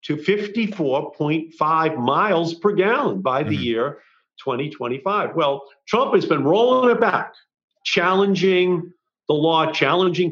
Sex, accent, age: male, American, 50-69